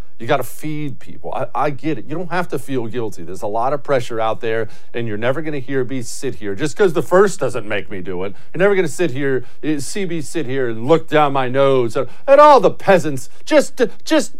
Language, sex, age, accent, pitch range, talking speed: English, male, 40-59, American, 100-140 Hz, 255 wpm